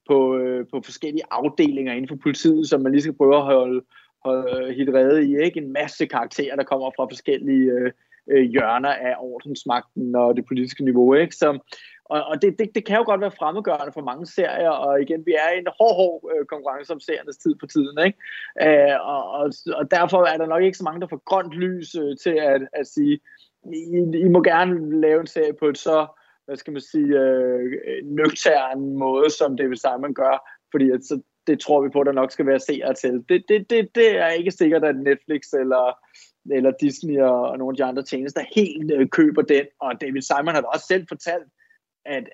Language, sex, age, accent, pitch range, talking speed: Danish, male, 20-39, native, 130-165 Hz, 205 wpm